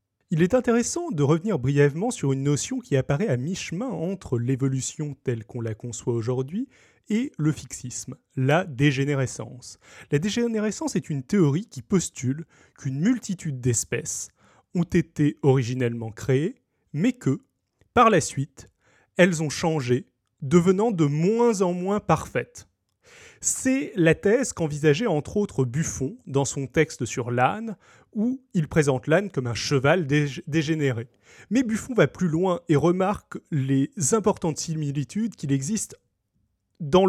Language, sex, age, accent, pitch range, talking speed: French, male, 30-49, French, 130-190 Hz, 140 wpm